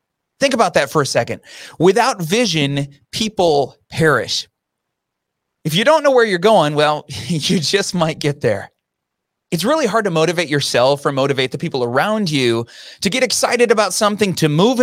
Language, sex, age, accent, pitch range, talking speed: English, male, 30-49, American, 140-205 Hz, 170 wpm